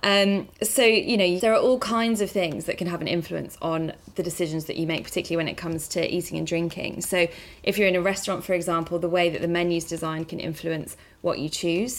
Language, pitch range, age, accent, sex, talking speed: English, 165-185 Hz, 20-39, British, female, 240 wpm